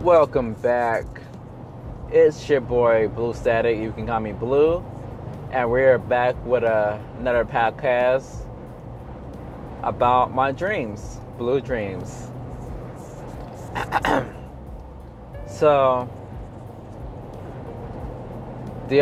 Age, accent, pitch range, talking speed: 20-39, American, 105-125 Hz, 80 wpm